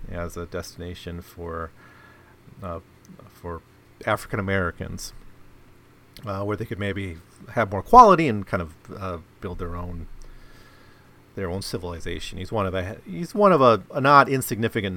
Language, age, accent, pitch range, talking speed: English, 40-59, American, 90-125 Hz, 150 wpm